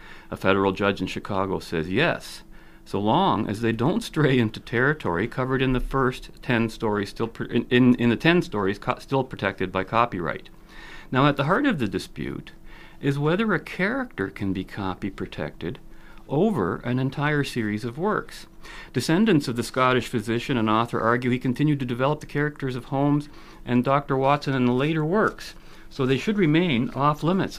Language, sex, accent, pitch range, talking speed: English, male, American, 105-150 Hz, 180 wpm